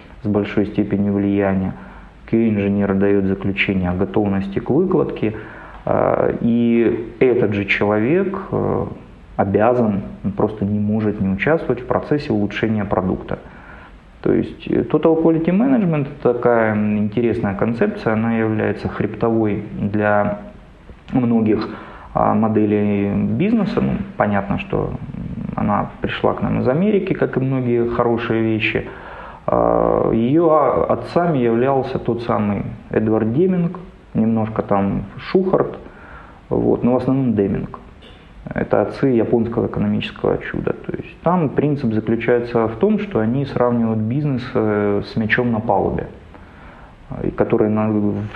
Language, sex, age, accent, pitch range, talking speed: Ukrainian, male, 20-39, native, 105-125 Hz, 115 wpm